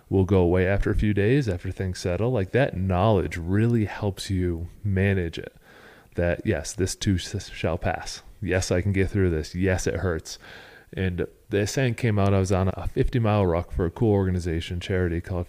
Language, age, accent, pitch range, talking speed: English, 30-49, American, 90-105 Hz, 200 wpm